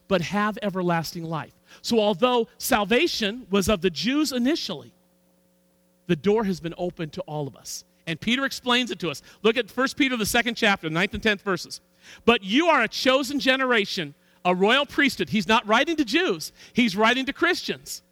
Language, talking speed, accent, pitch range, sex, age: English, 185 wpm, American, 190-280 Hz, male, 50-69